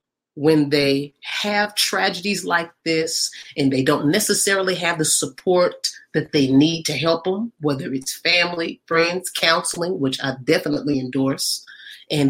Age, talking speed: 40-59, 140 wpm